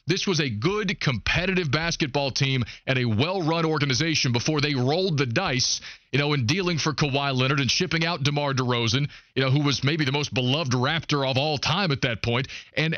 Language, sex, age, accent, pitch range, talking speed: English, male, 40-59, American, 140-175 Hz, 205 wpm